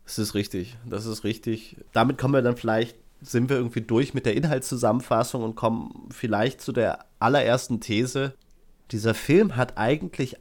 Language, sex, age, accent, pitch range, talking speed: German, male, 30-49, German, 110-140 Hz, 165 wpm